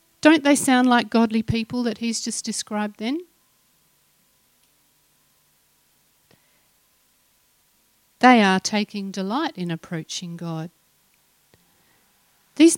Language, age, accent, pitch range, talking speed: English, 50-69, Australian, 190-245 Hz, 90 wpm